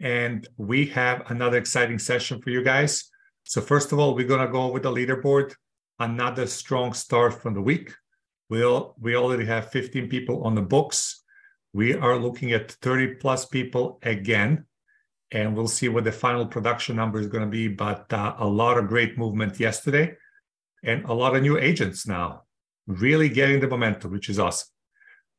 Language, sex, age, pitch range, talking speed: English, male, 40-59, 115-145 Hz, 185 wpm